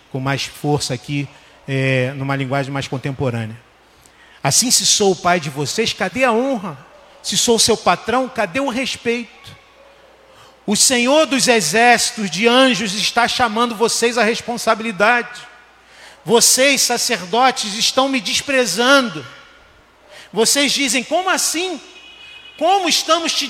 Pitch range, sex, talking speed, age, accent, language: 205-270 Hz, male, 125 wpm, 40-59, Brazilian, Portuguese